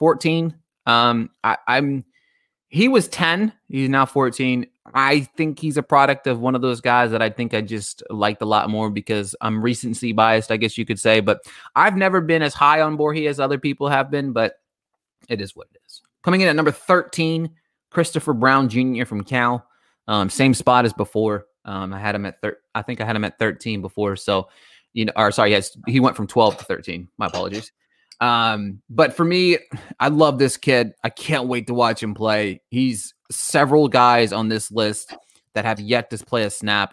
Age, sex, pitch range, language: 20-39, male, 105-140 Hz, English